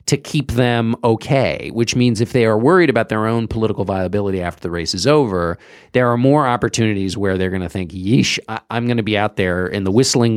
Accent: American